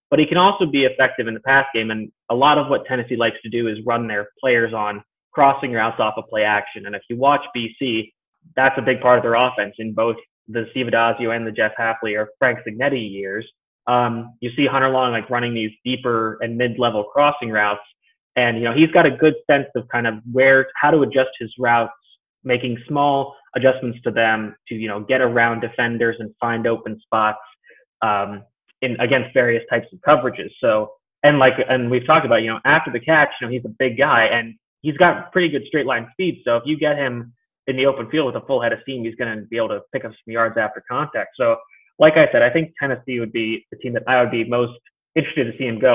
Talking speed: 235 wpm